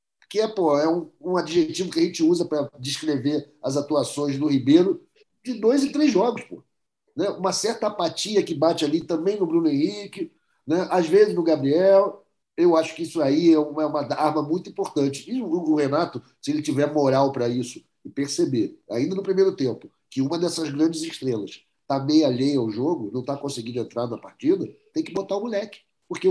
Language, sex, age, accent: Portuguese, male, 50-69, Brazilian